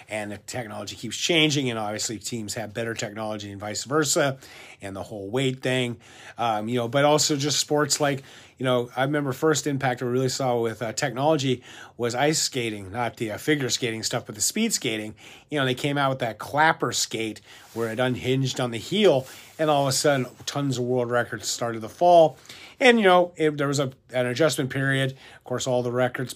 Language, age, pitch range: English, 40-59, 115-145 Hz